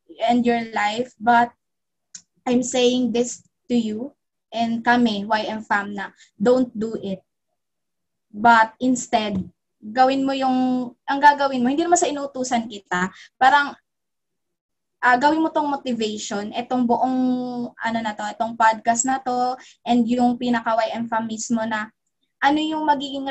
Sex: female